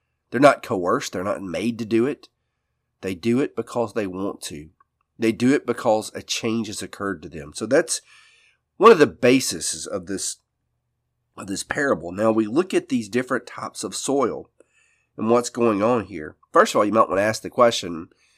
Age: 40-59